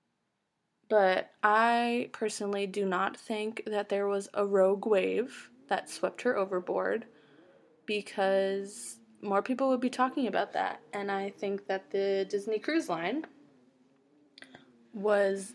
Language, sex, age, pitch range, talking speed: English, female, 20-39, 195-225 Hz, 125 wpm